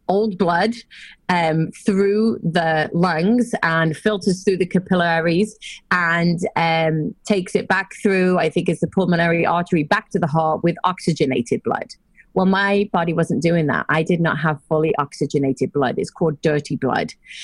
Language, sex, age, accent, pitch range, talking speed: English, female, 30-49, British, 160-195 Hz, 160 wpm